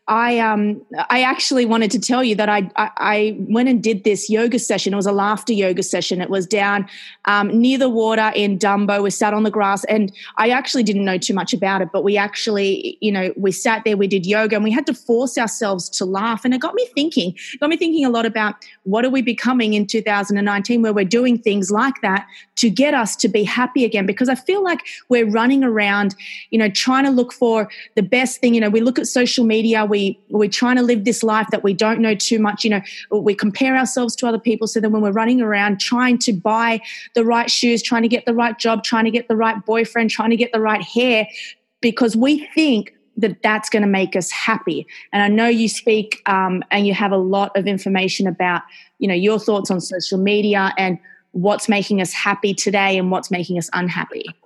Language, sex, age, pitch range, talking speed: English, female, 20-39, 200-240 Hz, 235 wpm